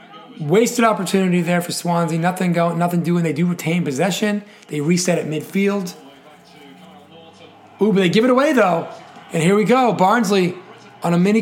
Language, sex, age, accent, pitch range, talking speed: English, male, 30-49, American, 145-190 Hz, 170 wpm